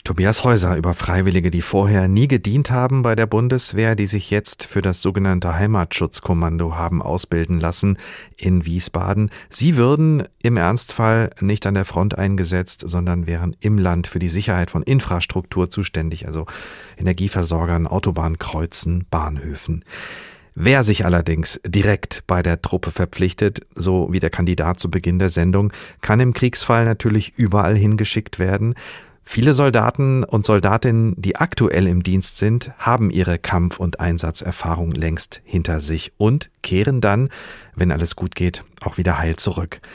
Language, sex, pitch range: German, male, 85-110 Hz